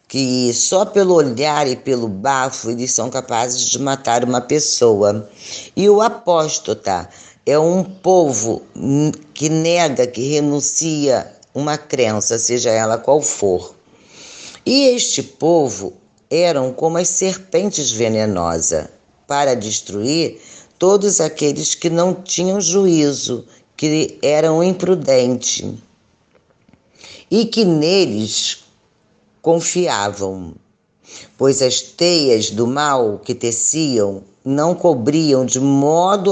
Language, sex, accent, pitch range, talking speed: Portuguese, female, Brazilian, 120-170 Hz, 105 wpm